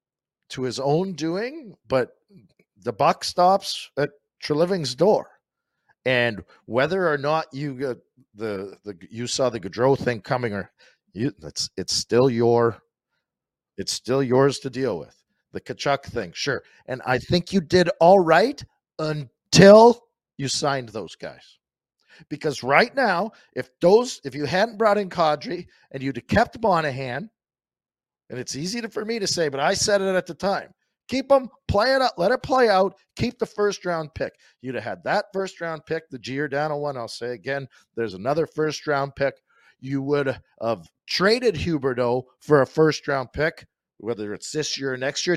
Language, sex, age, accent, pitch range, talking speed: English, male, 50-69, American, 130-185 Hz, 175 wpm